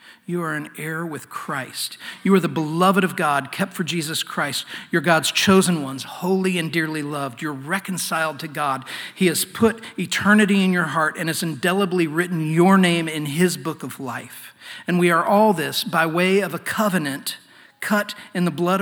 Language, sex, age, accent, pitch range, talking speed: English, male, 40-59, American, 135-175 Hz, 190 wpm